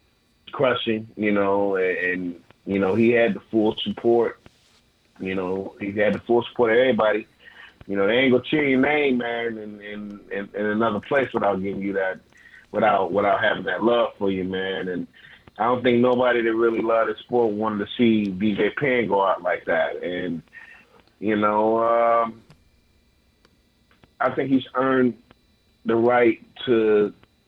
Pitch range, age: 100-120 Hz, 30-49